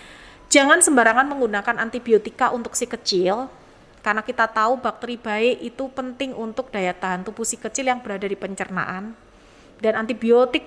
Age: 30-49